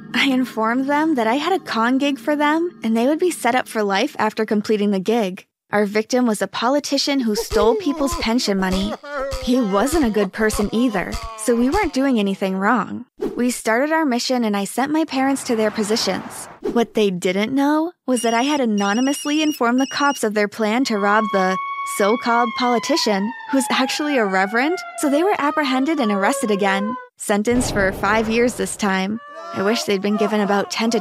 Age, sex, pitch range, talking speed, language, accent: 20-39, female, 210-265 Hz, 195 wpm, English, American